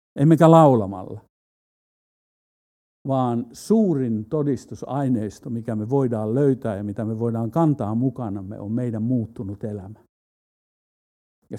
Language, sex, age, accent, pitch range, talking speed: Finnish, male, 60-79, native, 110-150 Hz, 105 wpm